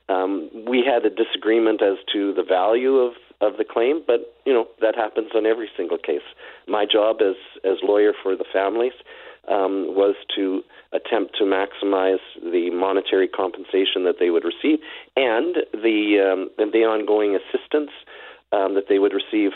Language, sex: English, male